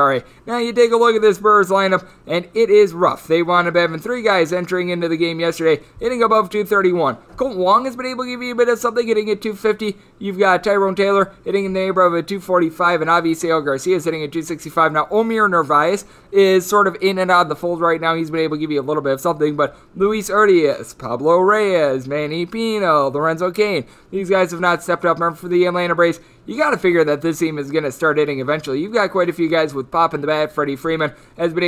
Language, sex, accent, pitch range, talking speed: English, male, American, 160-190 Hz, 250 wpm